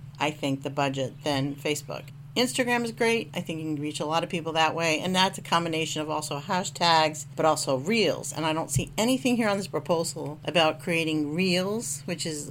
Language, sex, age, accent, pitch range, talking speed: English, female, 50-69, American, 150-195 Hz, 210 wpm